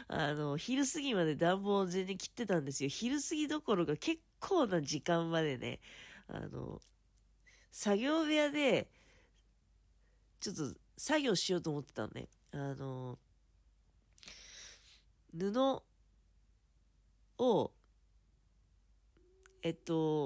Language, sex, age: Japanese, female, 40-59